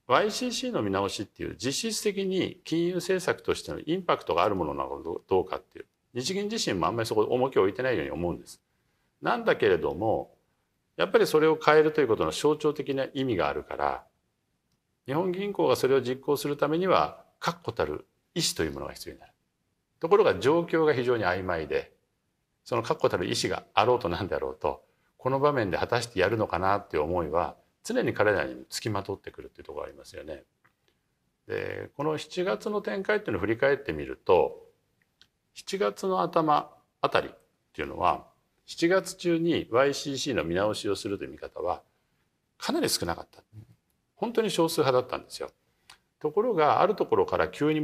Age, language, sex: 50-69, Japanese, male